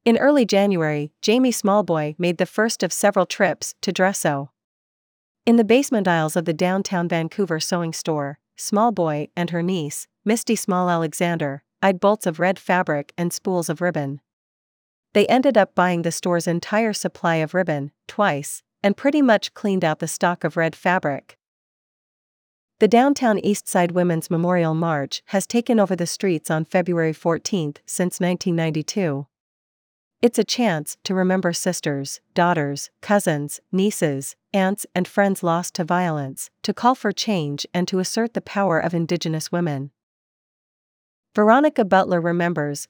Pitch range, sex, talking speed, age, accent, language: 160-200 Hz, female, 150 wpm, 40-59, American, English